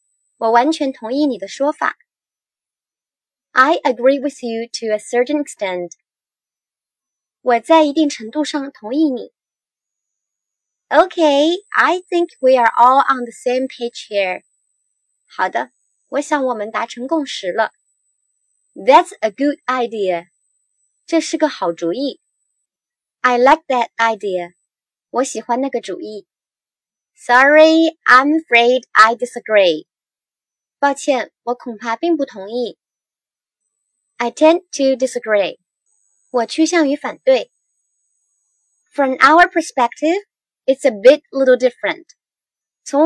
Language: Chinese